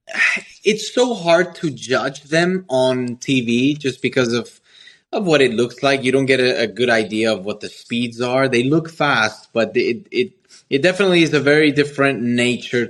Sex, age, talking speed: male, 20-39, 190 wpm